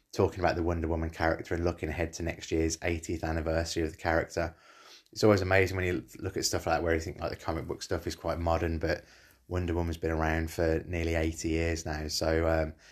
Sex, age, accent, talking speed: male, 20-39, British, 230 wpm